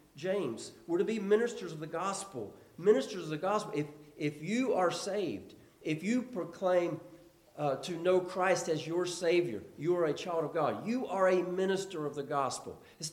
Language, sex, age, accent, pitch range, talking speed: English, male, 50-69, American, 145-210 Hz, 185 wpm